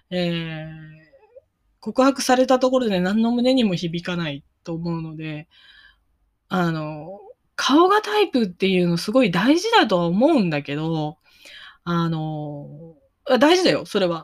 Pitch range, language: 170-290 Hz, Japanese